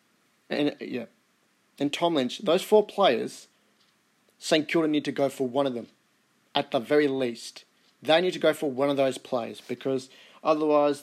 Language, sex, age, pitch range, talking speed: English, male, 30-49, 130-155 Hz, 175 wpm